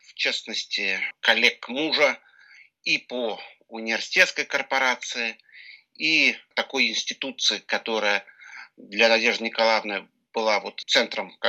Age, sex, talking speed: 50-69, male, 90 wpm